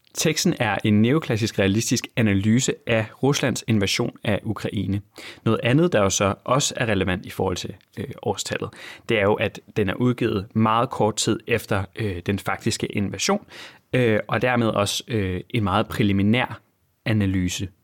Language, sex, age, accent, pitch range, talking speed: Danish, male, 30-49, native, 100-130 Hz, 160 wpm